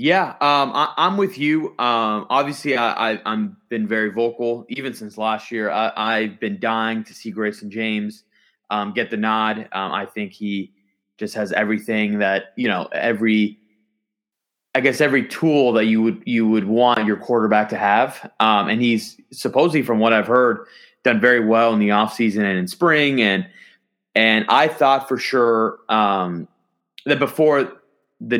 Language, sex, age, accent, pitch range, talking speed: English, male, 20-39, American, 110-135 Hz, 175 wpm